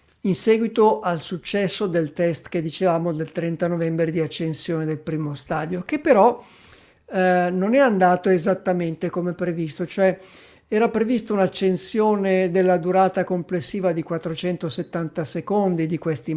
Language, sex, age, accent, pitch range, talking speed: Italian, male, 50-69, native, 165-195 Hz, 135 wpm